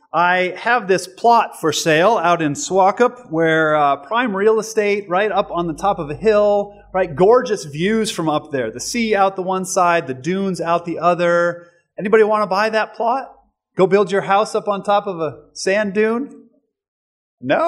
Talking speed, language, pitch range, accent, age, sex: 195 wpm, English, 160-210 Hz, American, 30-49, male